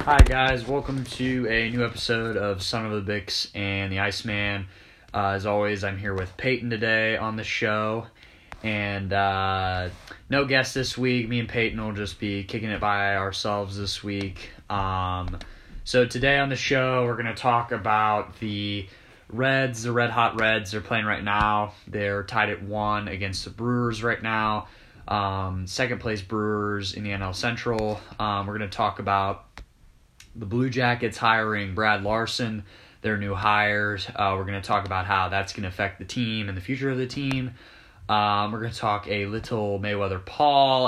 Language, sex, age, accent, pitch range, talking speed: English, male, 20-39, American, 100-115 Hz, 185 wpm